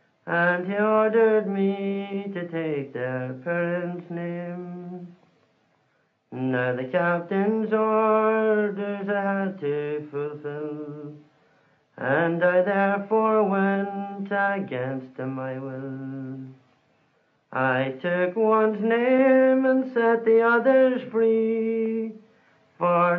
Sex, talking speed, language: male, 90 wpm, English